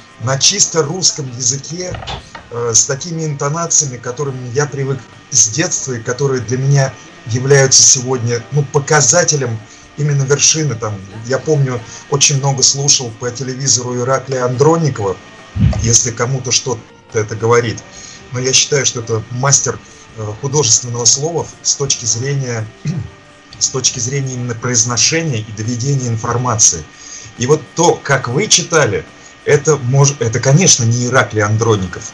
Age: 30-49